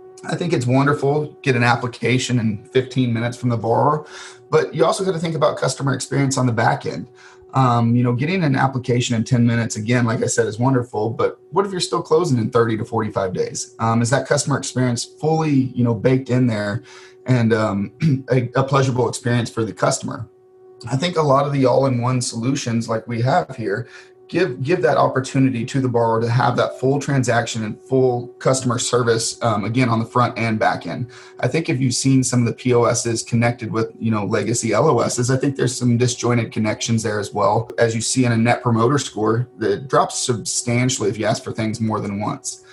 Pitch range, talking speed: 115-135 Hz, 215 wpm